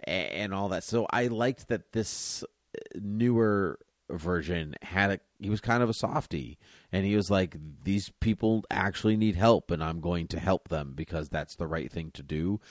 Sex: male